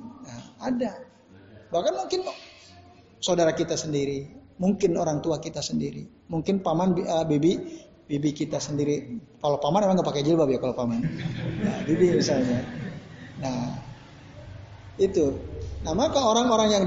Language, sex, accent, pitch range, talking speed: Indonesian, male, native, 140-215 Hz, 125 wpm